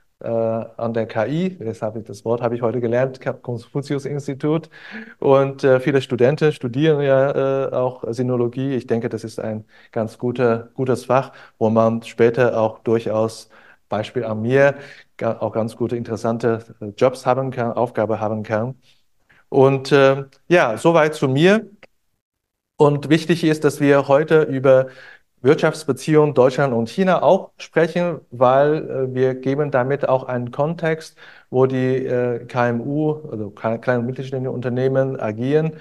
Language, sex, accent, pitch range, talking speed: German, male, German, 115-140 Hz, 145 wpm